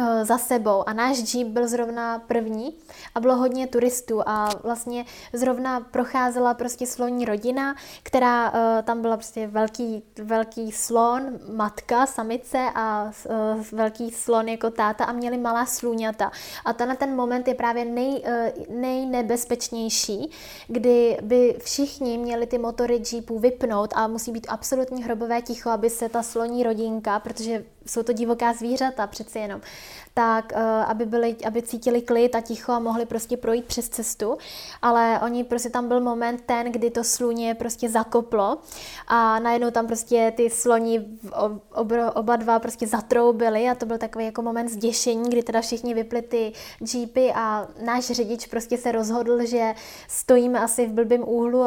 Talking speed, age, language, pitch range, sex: 155 wpm, 20-39, Czech, 225-245 Hz, female